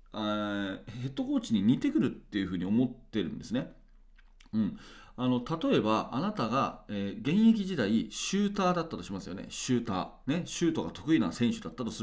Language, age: Japanese, 40-59